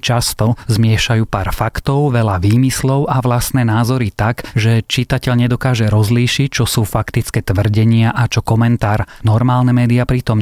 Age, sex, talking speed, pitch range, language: 30-49, male, 140 wpm, 110-125 Hz, Slovak